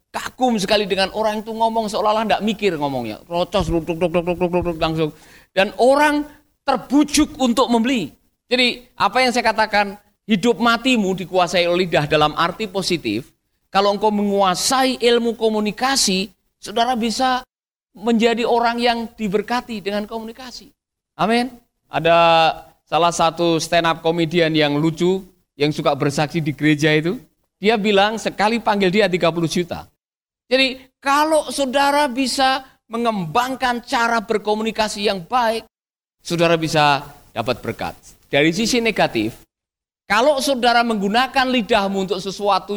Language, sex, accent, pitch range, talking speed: Indonesian, male, native, 165-230 Hz, 130 wpm